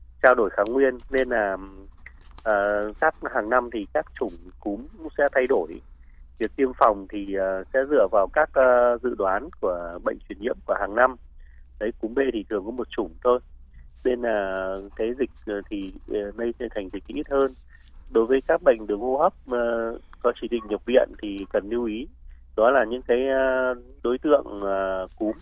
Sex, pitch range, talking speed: male, 95-130 Hz, 195 wpm